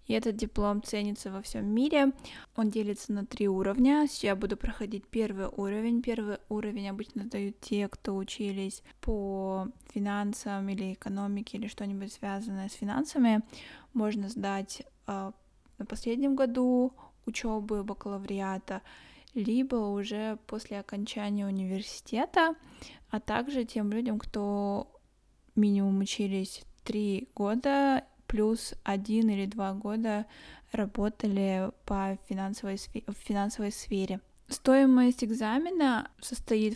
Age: 10-29